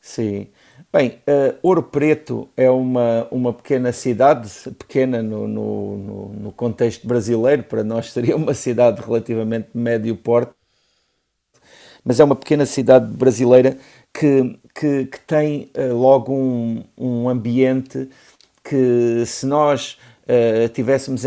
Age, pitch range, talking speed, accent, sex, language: 50-69, 115-130 Hz, 115 wpm, Portuguese, male, Portuguese